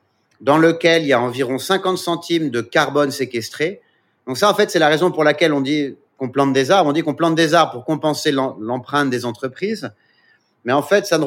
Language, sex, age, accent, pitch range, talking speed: French, male, 40-59, French, 125-160 Hz, 225 wpm